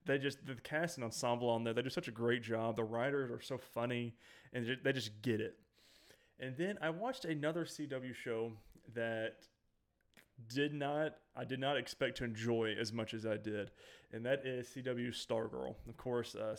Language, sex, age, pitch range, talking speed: English, male, 30-49, 115-130 Hz, 200 wpm